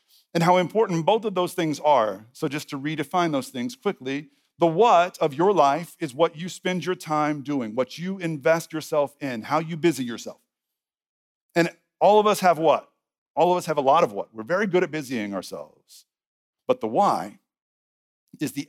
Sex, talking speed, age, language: male, 195 wpm, 50-69, English